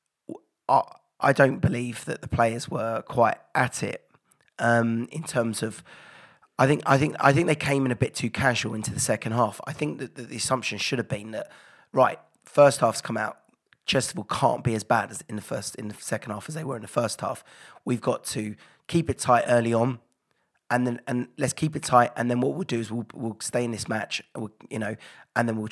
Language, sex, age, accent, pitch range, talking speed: English, male, 20-39, British, 115-140 Hz, 230 wpm